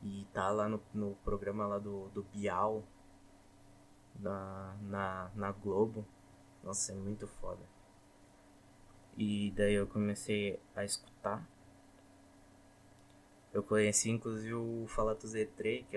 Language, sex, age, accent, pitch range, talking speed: Portuguese, male, 20-39, Brazilian, 95-115 Hz, 115 wpm